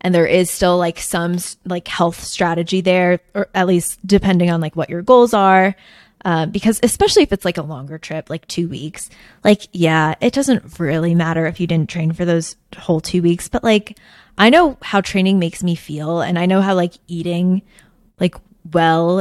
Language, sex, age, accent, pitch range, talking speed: English, female, 20-39, American, 170-205 Hz, 200 wpm